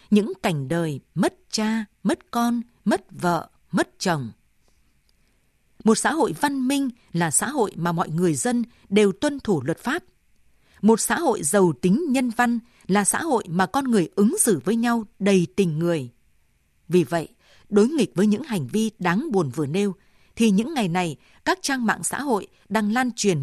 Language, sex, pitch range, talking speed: Vietnamese, female, 170-230 Hz, 185 wpm